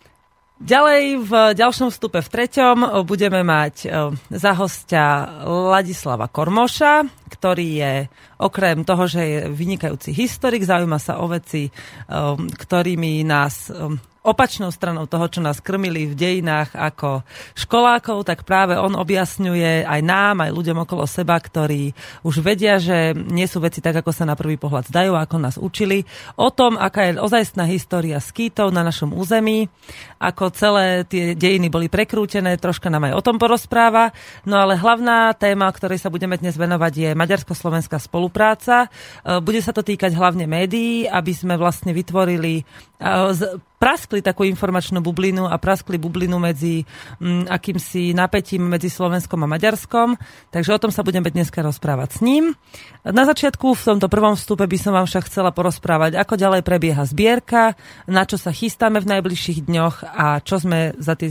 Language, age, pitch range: Slovak, 30-49, 165-205 Hz